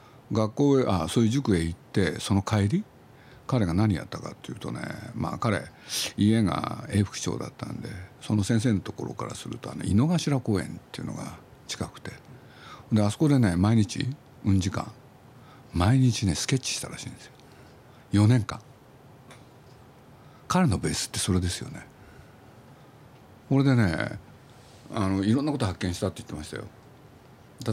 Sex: male